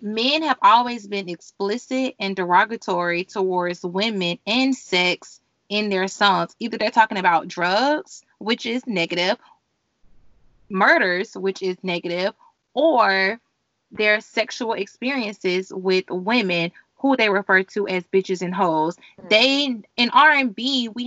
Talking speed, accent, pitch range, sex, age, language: 125 wpm, American, 185-220 Hz, female, 20-39, English